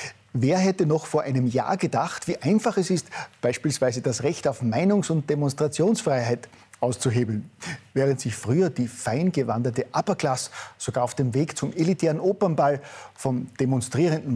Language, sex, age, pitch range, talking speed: German, male, 50-69, 125-155 Hz, 140 wpm